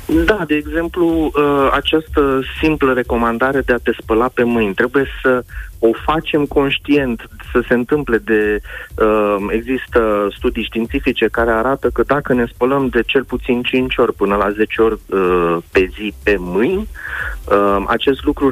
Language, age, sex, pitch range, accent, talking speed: Romanian, 30-49, male, 110-140 Hz, native, 145 wpm